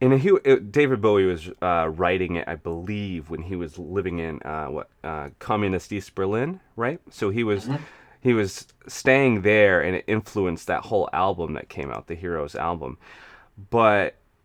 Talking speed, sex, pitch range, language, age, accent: 170 wpm, male, 90-115 Hz, English, 30-49, American